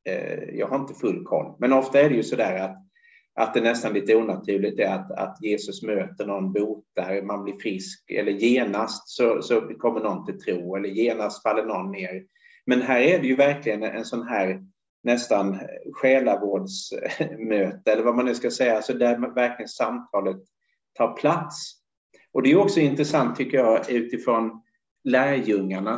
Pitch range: 100-140 Hz